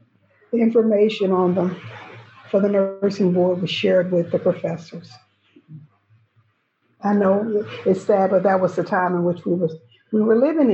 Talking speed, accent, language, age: 160 wpm, American, English, 50-69